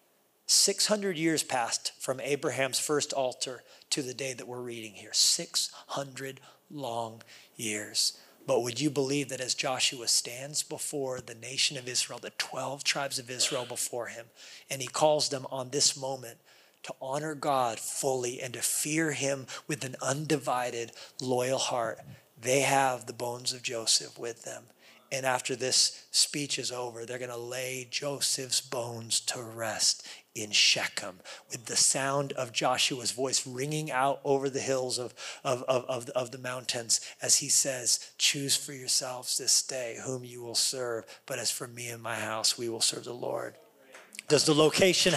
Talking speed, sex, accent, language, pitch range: 165 wpm, male, American, English, 125-150 Hz